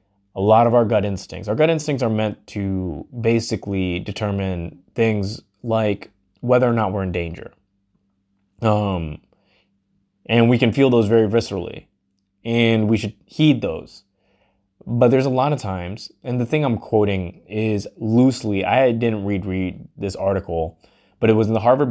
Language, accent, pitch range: English, American, 100-115 Hz